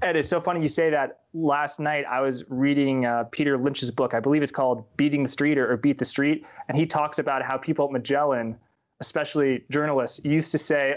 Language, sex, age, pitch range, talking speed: English, male, 20-39, 130-155 Hz, 230 wpm